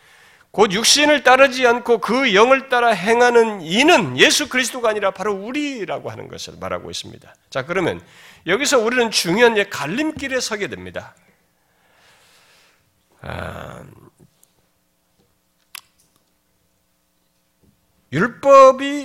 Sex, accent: male, native